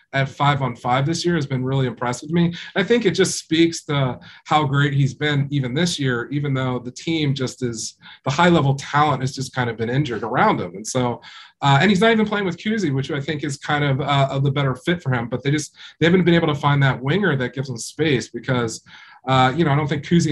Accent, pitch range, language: American, 130-160 Hz, English